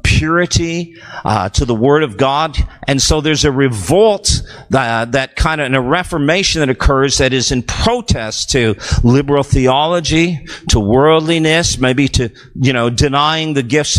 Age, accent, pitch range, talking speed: 50-69, American, 115-170 Hz, 160 wpm